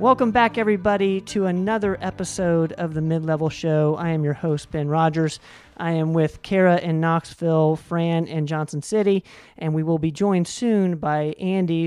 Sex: male